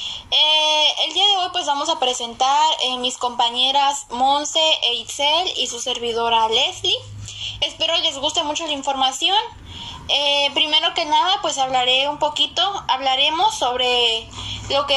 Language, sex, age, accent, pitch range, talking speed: Spanish, female, 10-29, Mexican, 250-325 Hz, 150 wpm